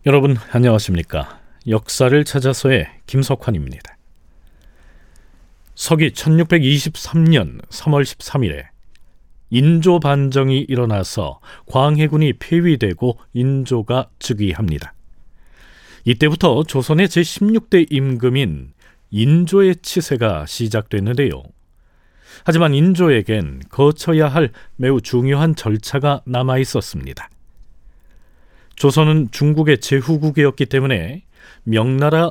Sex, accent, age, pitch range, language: male, native, 40-59, 105-155 Hz, Korean